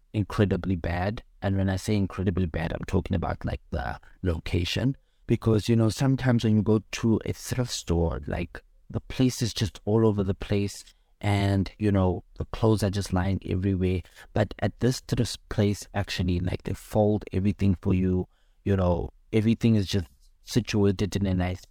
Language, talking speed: English, 175 wpm